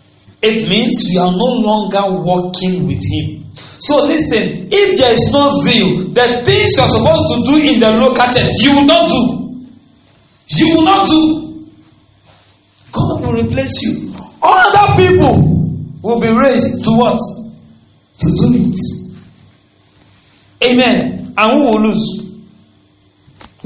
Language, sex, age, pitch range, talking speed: English, male, 40-59, 160-255 Hz, 140 wpm